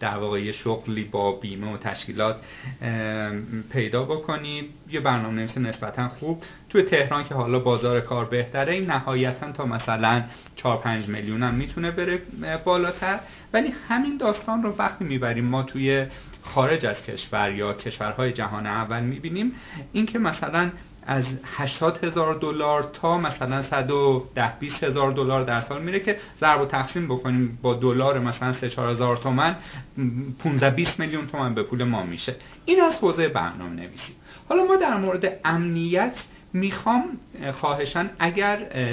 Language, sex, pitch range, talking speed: Persian, male, 120-165 Hz, 145 wpm